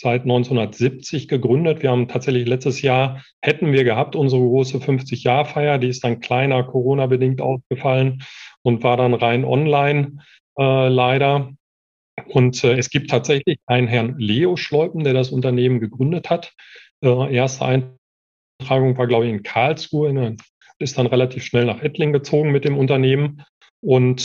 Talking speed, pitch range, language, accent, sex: 150 wpm, 120-135 Hz, German, German, male